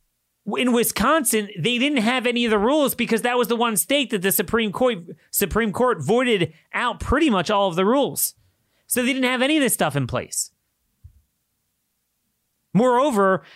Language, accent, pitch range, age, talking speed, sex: English, American, 160-240 Hz, 30-49, 175 wpm, male